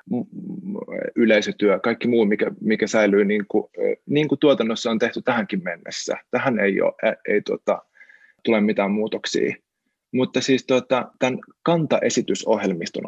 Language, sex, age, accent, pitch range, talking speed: Finnish, male, 20-39, native, 110-135 Hz, 115 wpm